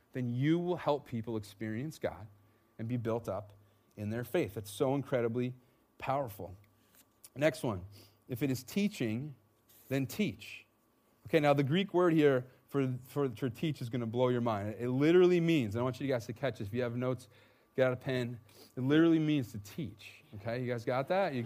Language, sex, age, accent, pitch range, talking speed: English, male, 30-49, American, 125-185 Hz, 200 wpm